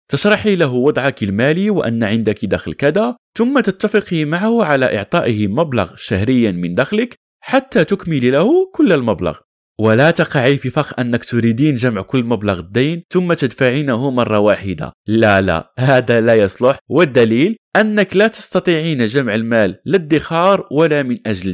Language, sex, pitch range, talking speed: Arabic, male, 115-195 Hz, 140 wpm